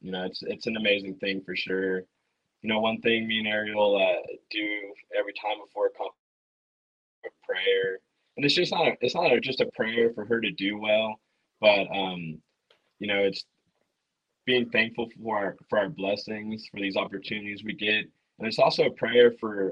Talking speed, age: 195 wpm, 20-39